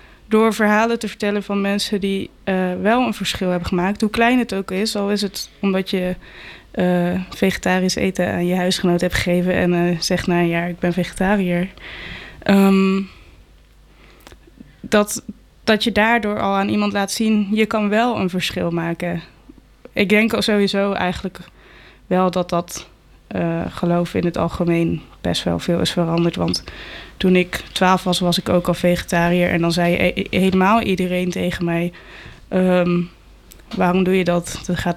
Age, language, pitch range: 20-39, Dutch, 175-205 Hz